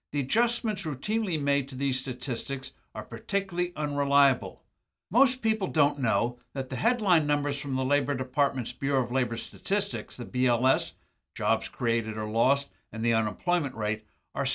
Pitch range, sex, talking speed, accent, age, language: 120-170 Hz, male, 155 wpm, American, 60-79, English